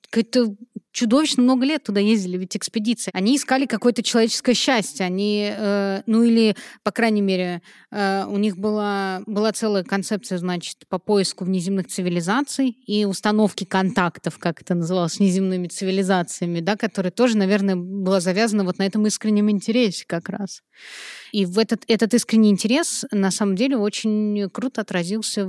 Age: 20-39